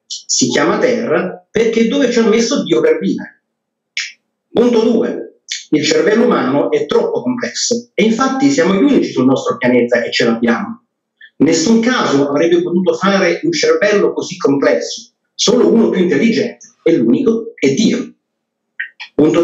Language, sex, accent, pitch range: Italian, male, native, 190-265 Hz